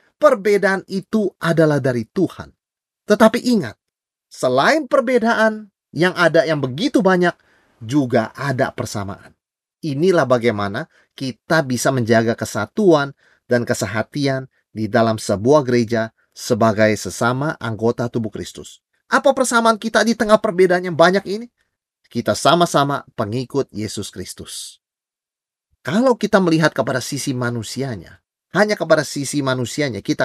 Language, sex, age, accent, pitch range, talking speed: Indonesian, male, 30-49, native, 120-195 Hz, 115 wpm